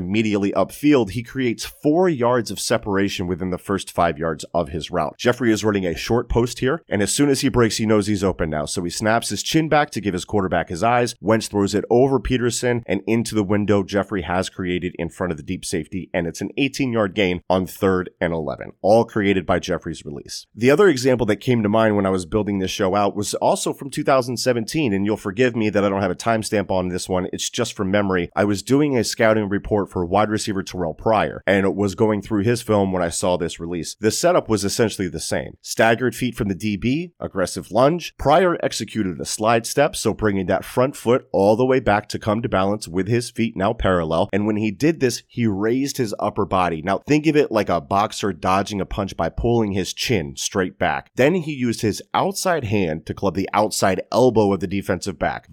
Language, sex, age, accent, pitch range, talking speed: English, male, 30-49, American, 95-120 Hz, 230 wpm